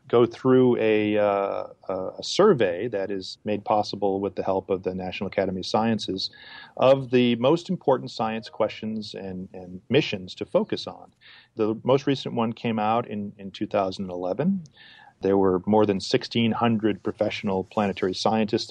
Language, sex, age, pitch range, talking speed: English, male, 40-59, 95-120 Hz, 150 wpm